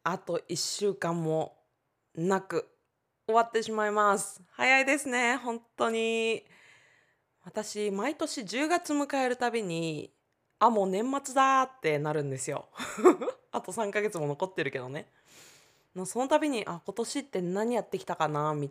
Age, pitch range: 20-39, 150-215 Hz